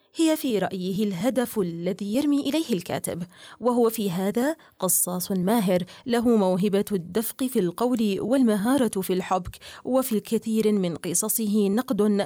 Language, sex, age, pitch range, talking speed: Arabic, female, 30-49, 190-240 Hz, 125 wpm